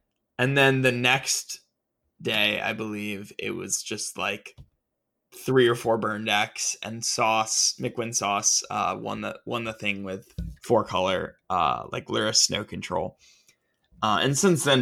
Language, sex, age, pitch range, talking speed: English, male, 20-39, 110-130 Hz, 155 wpm